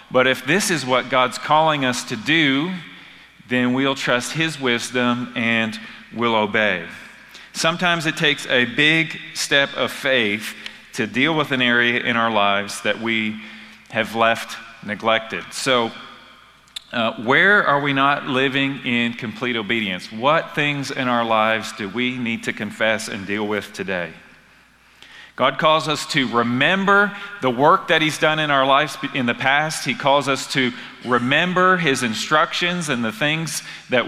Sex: male